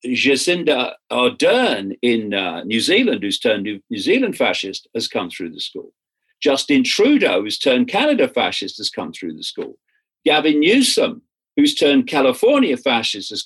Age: 50-69